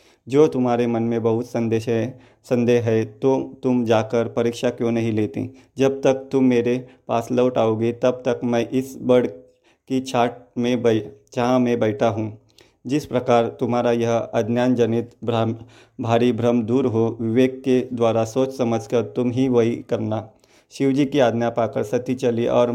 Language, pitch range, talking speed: Hindi, 115-125 Hz, 165 wpm